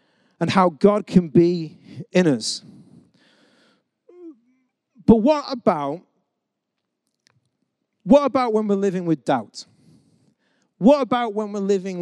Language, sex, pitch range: English, male, 165-225 Hz